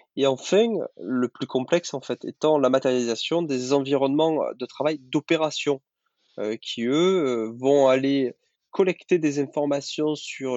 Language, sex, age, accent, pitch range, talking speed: French, male, 20-39, French, 125-155 Hz, 135 wpm